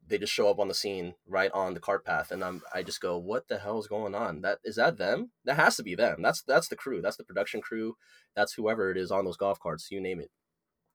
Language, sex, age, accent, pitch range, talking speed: English, male, 20-39, American, 95-150 Hz, 280 wpm